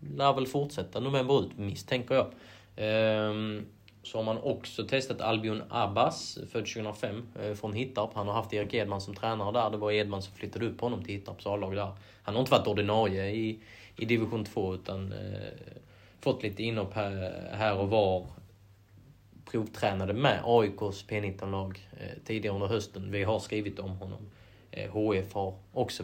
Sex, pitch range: male, 100-125 Hz